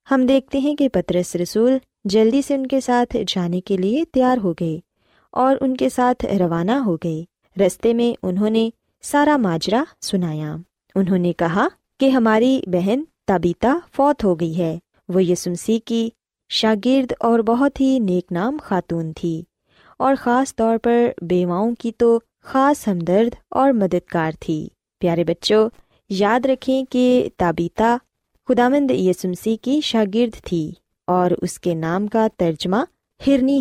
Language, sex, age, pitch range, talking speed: Urdu, female, 20-39, 180-255 Hz, 145 wpm